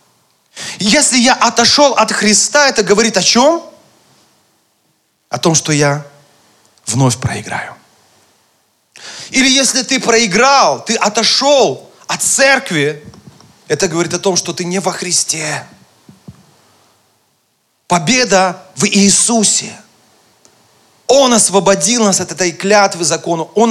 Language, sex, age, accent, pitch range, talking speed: Russian, male, 30-49, native, 175-225 Hz, 110 wpm